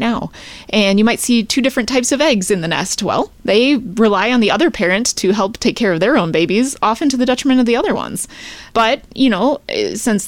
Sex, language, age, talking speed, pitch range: female, English, 20-39, 235 wpm, 190-250 Hz